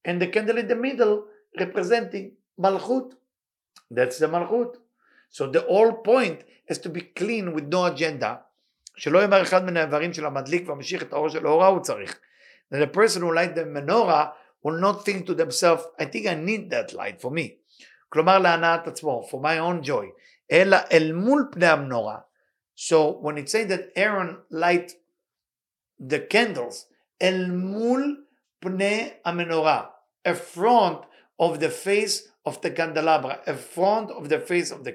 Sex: male